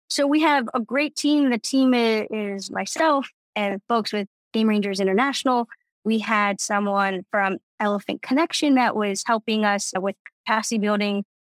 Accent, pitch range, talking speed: American, 205-265 Hz, 150 wpm